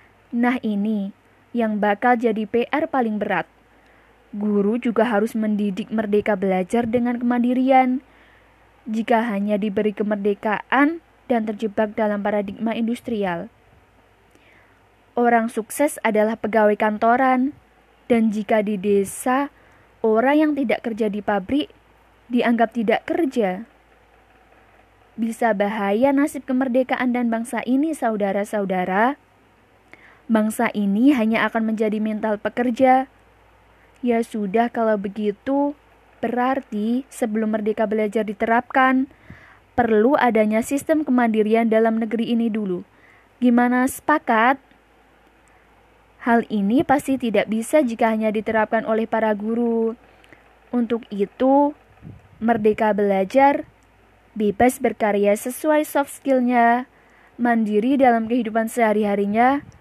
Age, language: 20-39, Indonesian